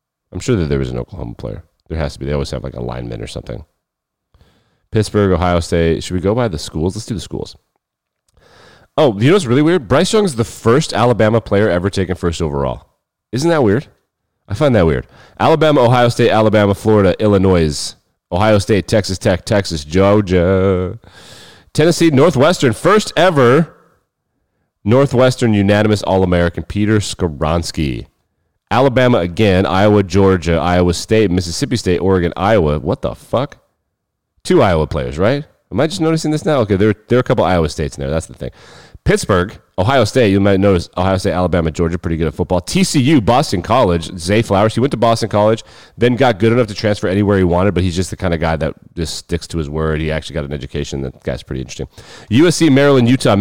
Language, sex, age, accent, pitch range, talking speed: English, male, 30-49, American, 85-115 Hz, 190 wpm